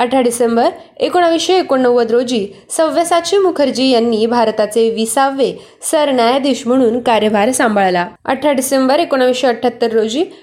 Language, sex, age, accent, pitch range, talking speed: Marathi, female, 20-39, native, 225-275 Hz, 110 wpm